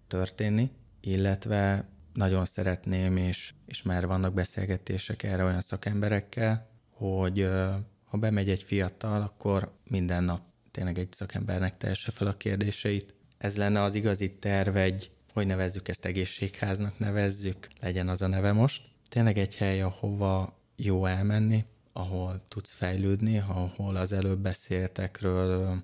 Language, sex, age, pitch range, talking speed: Hungarian, male, 20-39, 90-105 Hz, 130 wpm